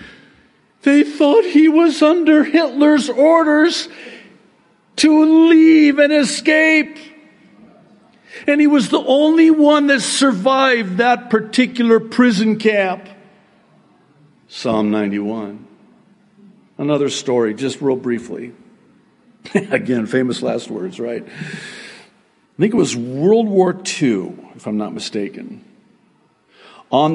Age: 60-79